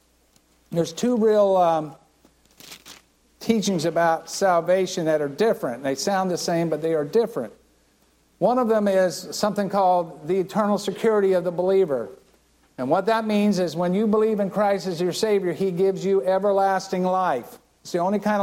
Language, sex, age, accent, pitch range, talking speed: English, male, 60-79, American, 165-200 Hz, 170 wpm